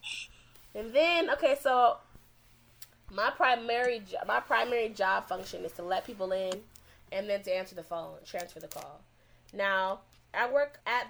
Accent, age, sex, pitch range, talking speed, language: American, 20-39, female, 185-235 Hz, 150 wpm, English